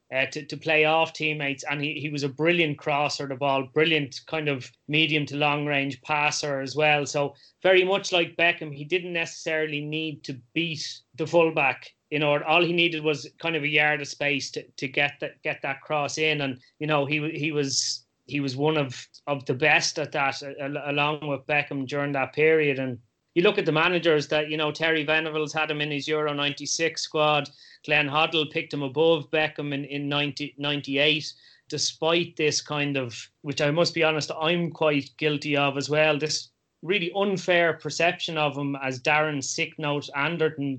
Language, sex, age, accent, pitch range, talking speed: English, male, 30-49, Irish, 145-160 Hz, 195 wpm